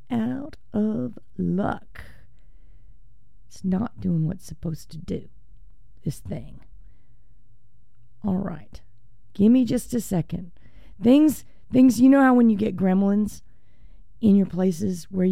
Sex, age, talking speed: female, 40-59, 120 wpm